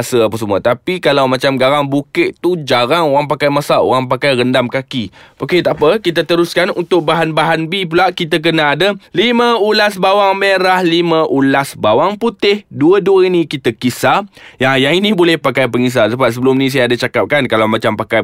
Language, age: Malay, 20-39